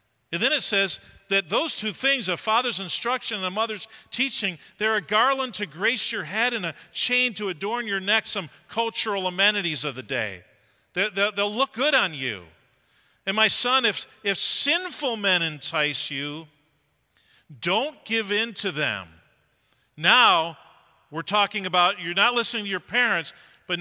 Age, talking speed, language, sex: 40-59, 170 wpm, English, male